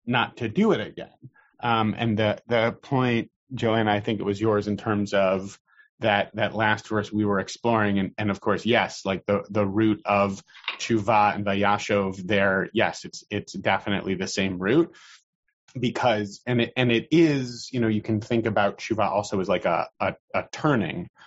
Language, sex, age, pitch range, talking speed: English, male, 30-49, 100-125 Hz, 190 wpm